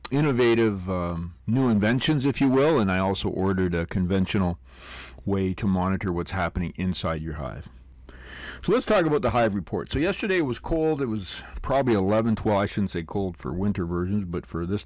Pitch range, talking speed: 85-110 Hz, 195 wpm